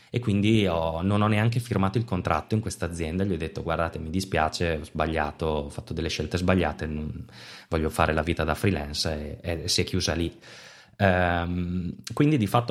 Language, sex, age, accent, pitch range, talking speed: Italian, male, 20-39, native, 85-105 Hz, 195 wpm